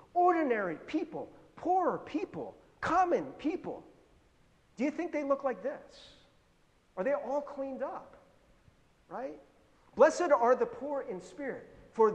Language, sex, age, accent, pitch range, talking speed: English, male, 40-59, American, 195-275 Hz, 130 wpm